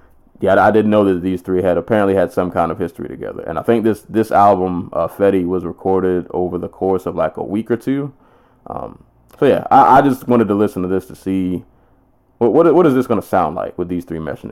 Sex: male